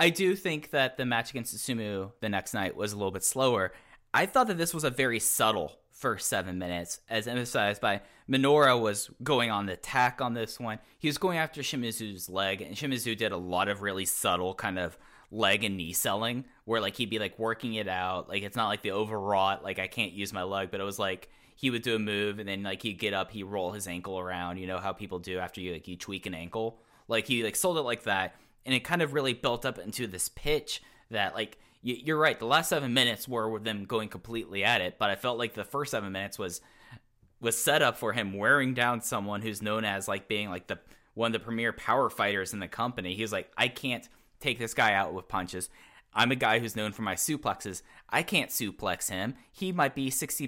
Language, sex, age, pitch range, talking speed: English, male, 10-29, 95-120 Hz, 240 wpm